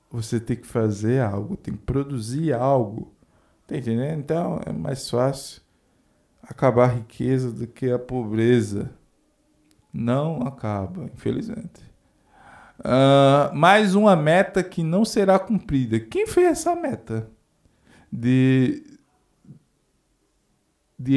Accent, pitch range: Brazilian, 100-140 Hz